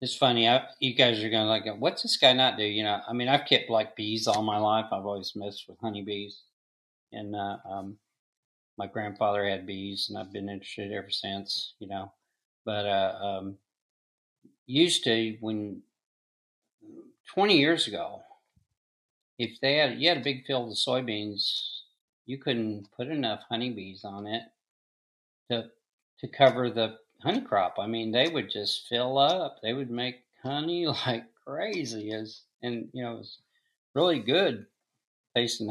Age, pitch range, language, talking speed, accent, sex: 50-69, 105-130 Hz, English, 165 wpm, American, male